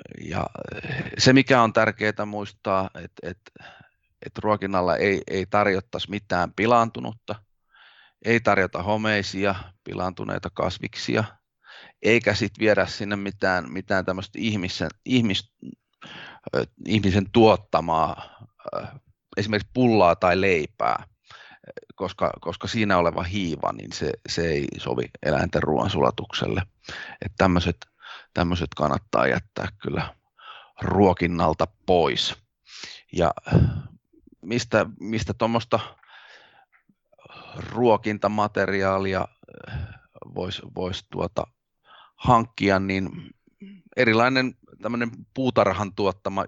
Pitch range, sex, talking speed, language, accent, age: 95-110 Hz, male, 90 wpm, Finnish, native, 30-49